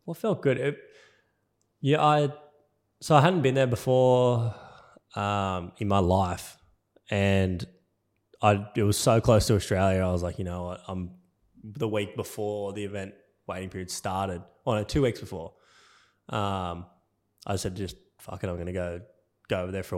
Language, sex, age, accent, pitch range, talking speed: English, male, 10-29, Australian, 95-110 Hz, 170 wpm